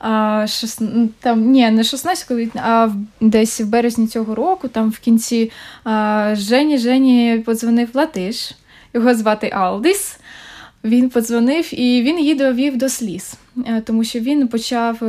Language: Ukrainian